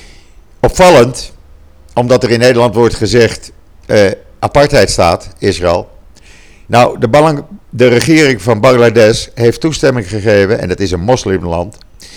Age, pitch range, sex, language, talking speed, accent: 50-69, 95-120 Hz, male, Dutch, 125 wpm, Dutch